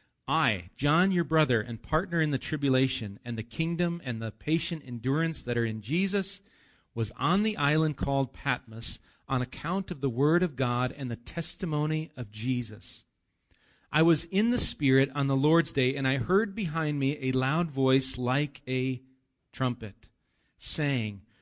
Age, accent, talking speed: 40-59, American, 165 wpm